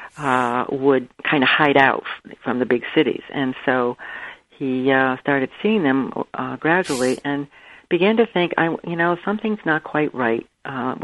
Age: 60-79